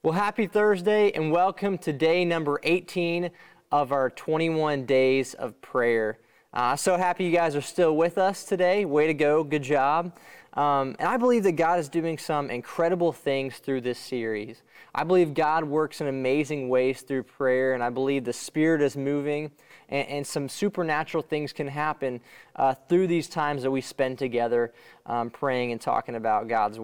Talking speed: 180 wpm